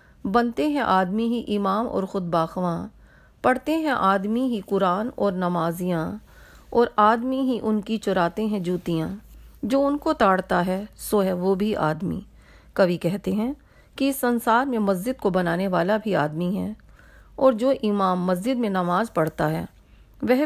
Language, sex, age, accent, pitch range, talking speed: Hindi, female, 40-59, native, 185-235 Hz, 150 wpm